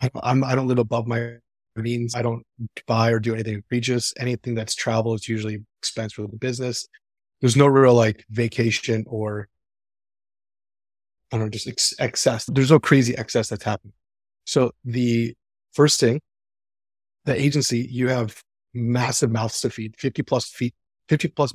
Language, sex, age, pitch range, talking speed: English, male, 30-49, 115-140 Hz, 160 wpm